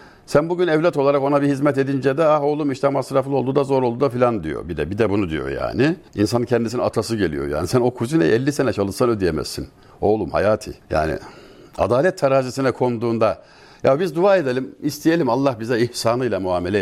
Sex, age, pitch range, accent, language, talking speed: male, 60-79, 115-145 Hz, native, Turkish, 195 wpm